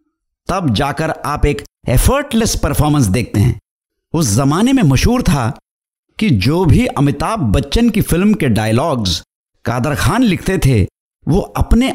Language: Hindi